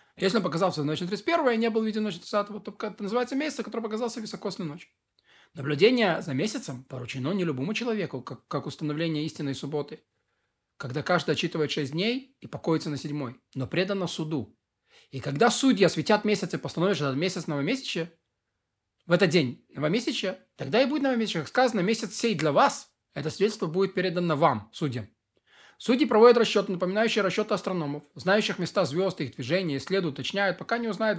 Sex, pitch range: male, 155-215 Hz